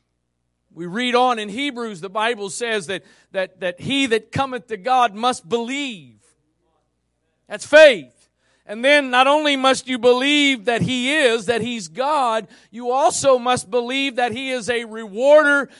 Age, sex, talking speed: 40-59, male, 160 wpm